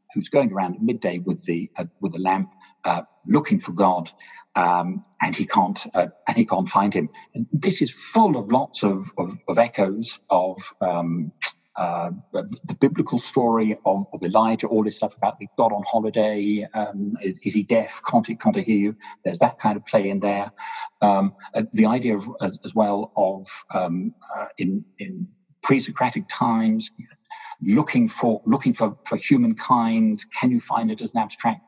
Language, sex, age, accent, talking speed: English, male, 40-59, British, 185 wpm